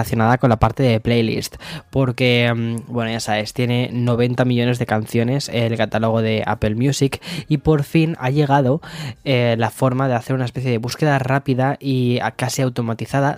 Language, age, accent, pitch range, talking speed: Spanish, 10-29, Spanish, 115-140 Hz, 170 wpm